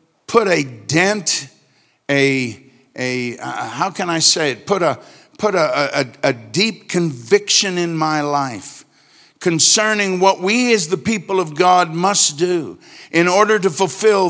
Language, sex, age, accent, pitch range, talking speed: English, male, 50-69, American, 145-200 Hz, 150 wpm